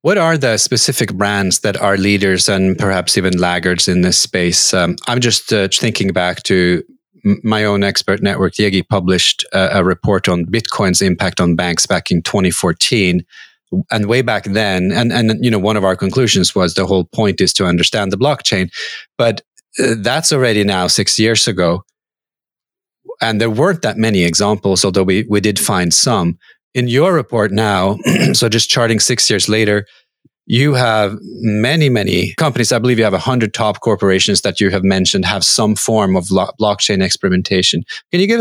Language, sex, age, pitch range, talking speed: English, male, 30-49, 95-115 Hz, 185 wpm